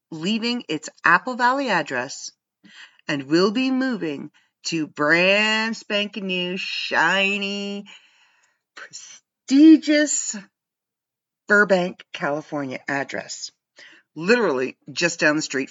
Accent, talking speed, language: American, 90 wpm, English